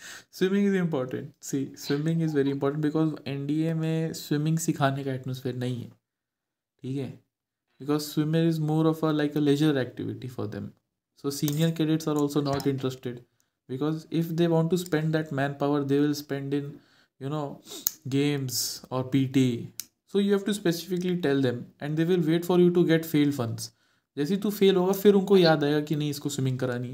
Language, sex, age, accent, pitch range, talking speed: Hindi, male, 20-39, native, 135-160 Hz, 195 wpm